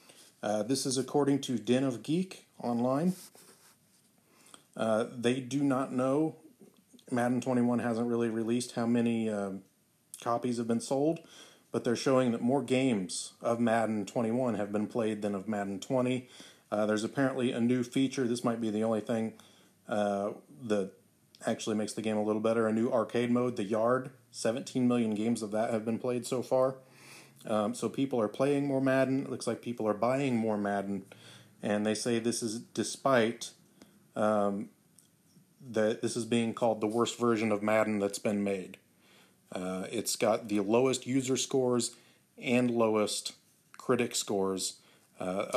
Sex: male